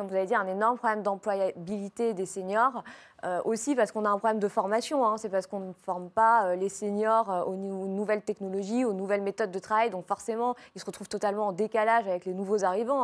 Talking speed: 220 wpm